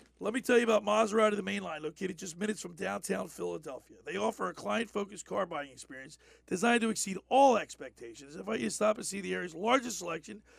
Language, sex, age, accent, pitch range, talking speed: English, male, 40-59, American, 215-270 Hz, 210 wpm